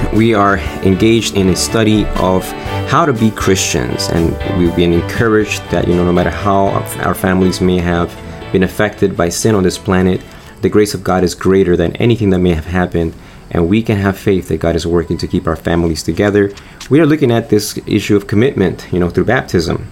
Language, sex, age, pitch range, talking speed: English, male, 30-49, 85-105 Hz, 210 wpm